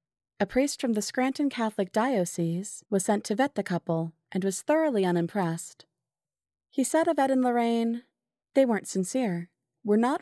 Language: English